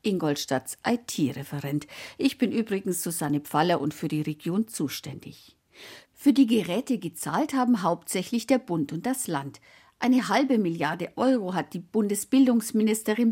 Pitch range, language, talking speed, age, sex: 155-240 Hz, German, 135 wpm, 50-69, female